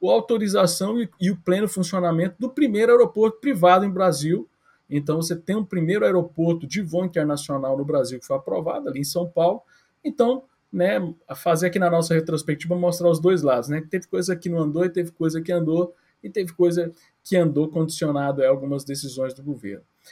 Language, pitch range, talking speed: Portuguese, 155-195 Hz, 190 wpm